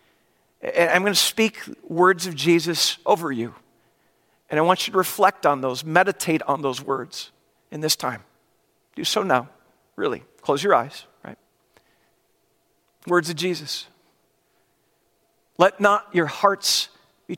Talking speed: 140 wpm